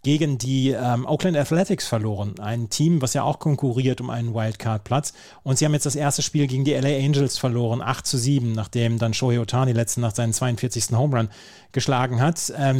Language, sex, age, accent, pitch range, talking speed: German, male, 30-49, German, 125-145 Hz, 195 wpm